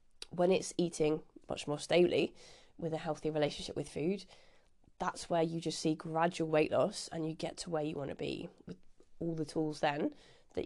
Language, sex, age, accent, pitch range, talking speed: English, female, 20-39, British, 155-175 Hz, 195 wpm